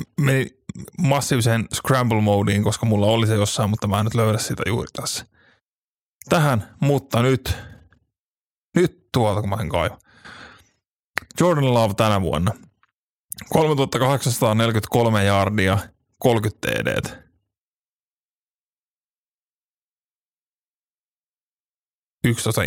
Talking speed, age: 95 wpm, 30-49